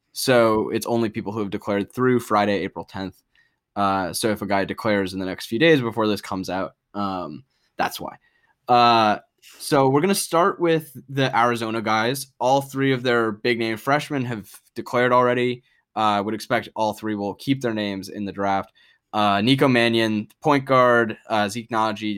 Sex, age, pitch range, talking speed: male, 10-29, 105-125 Hz, 185 wpm